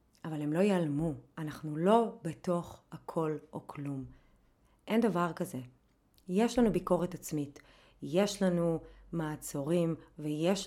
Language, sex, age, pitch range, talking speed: Hebrew, female, 30-49, 150-195 Hz, 120 wpm